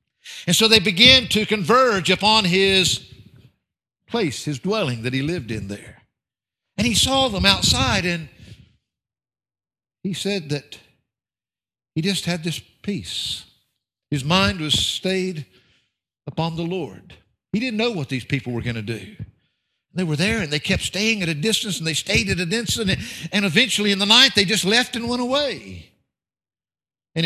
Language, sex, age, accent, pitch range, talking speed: English, male, 60-79, American, 125-185 Hz, 165 wpm